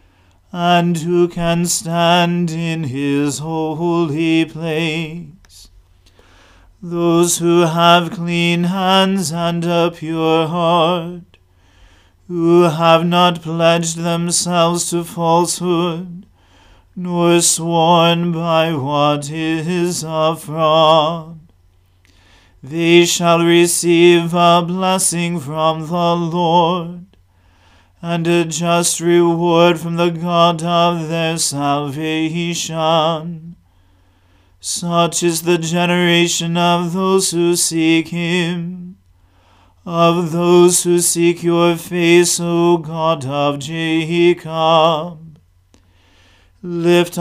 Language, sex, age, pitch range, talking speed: English, male, 40-59, 155-175 Hz, 90 wpm